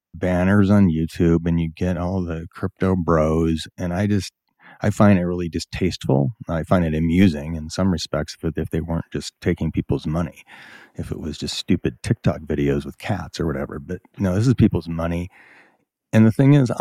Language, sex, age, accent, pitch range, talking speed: English, male, 40-59, American, 85-105 Hz, 195 wpm